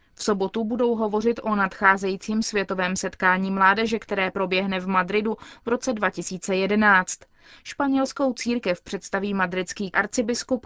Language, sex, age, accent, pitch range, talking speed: Czech, female, 20-39, native, 195-235 Hz, 120 wpm